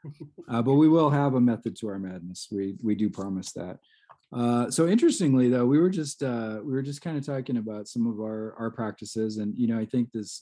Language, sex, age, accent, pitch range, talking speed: English, male, 20-39, American, 115-130 Hz, 235 wpm